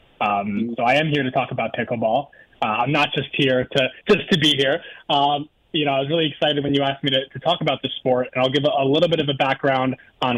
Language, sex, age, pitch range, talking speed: English, male, 20-39, 130-150 Hz, 270 wpm